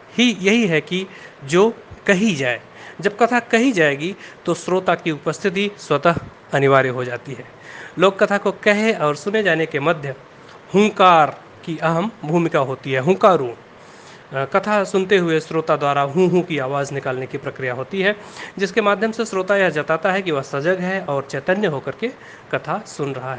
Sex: male